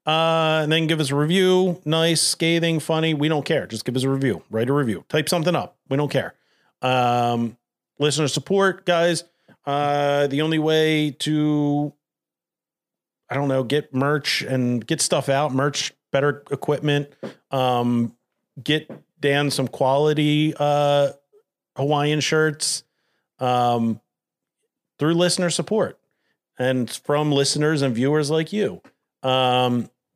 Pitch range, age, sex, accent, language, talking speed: 125-155 Hz, 40-59, male, American, English, 135 wpm